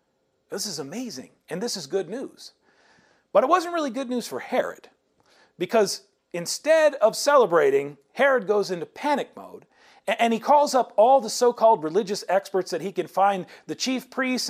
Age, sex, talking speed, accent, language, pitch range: 40-59, male, 170 wpm, American, English, 180-275 Hz